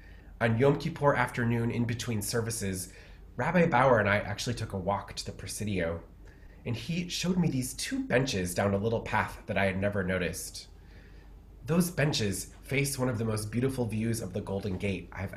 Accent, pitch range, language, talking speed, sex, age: American, 95-125 Hz, English, 185 wpm, male, 20-39